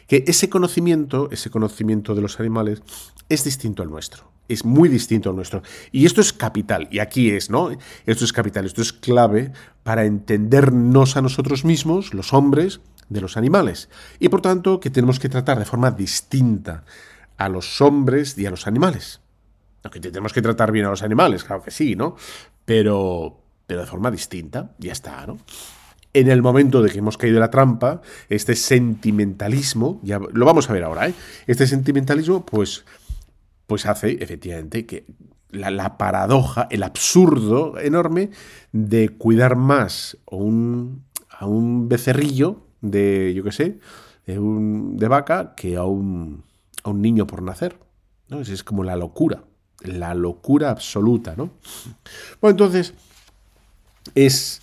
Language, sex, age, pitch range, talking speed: Spanish, male, 40-59, 95-135 Hz, 160 wpm